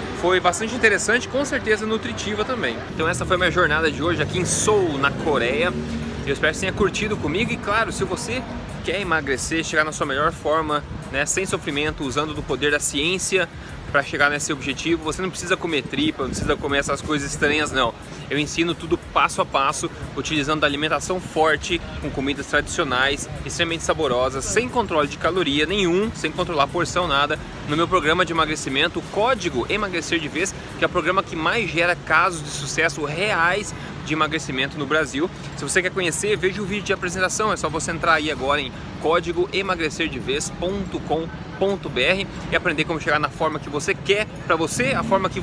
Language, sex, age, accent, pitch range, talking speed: Portuguese, male, 20-39, Brazilian, 145-185 Hz, 190 wpm